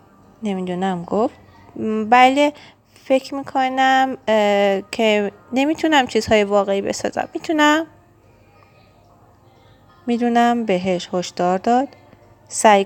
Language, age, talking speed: Persian, 30-49, 75 wpm